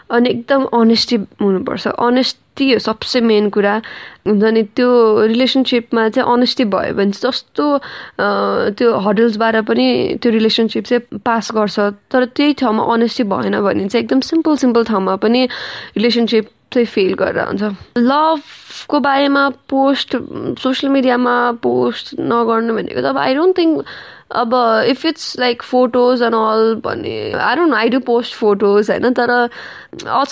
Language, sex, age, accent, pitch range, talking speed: English, female, 20-39, Indian, 220-255 Hz, 115 wpm